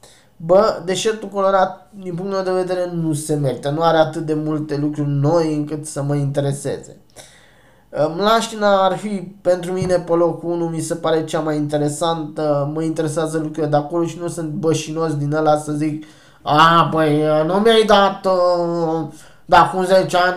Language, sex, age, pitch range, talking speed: Romanian, male, 20-39, 150-180 Hz, 170 wpm